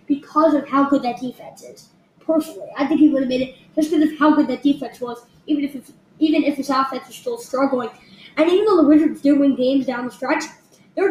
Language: English